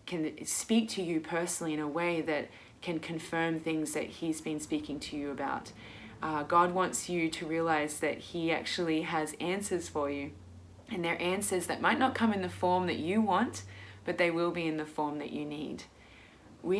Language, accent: English, Australian